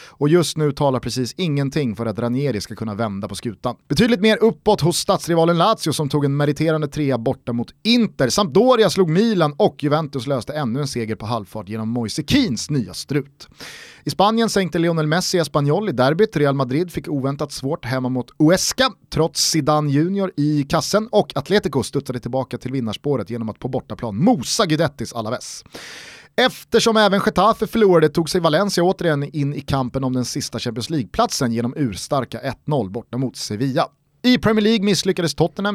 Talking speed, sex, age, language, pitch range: 175 wpm, male, 30-49, Swedish, 130-180 Hz